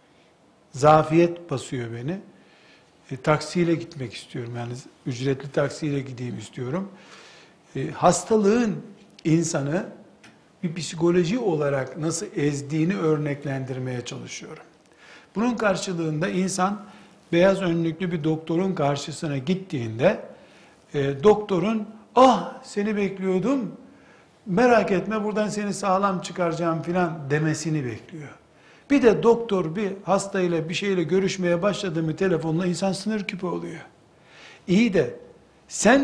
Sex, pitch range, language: male, 160-205 Hz, Turkish